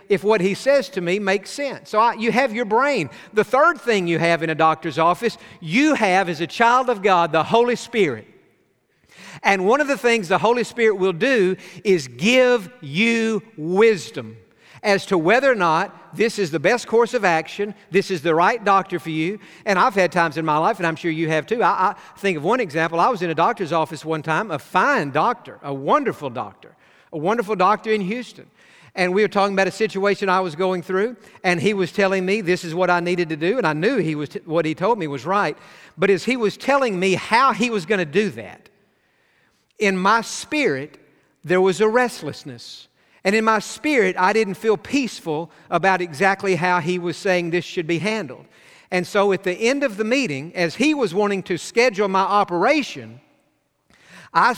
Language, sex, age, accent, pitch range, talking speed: English, male, 50-69, American, 170-220 Hz, 210 wpm